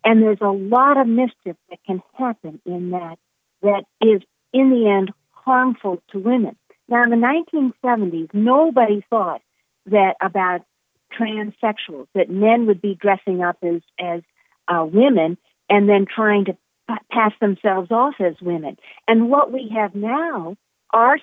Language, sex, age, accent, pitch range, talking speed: English, female, 50-69, American, 190-240 Hz, 155 wpm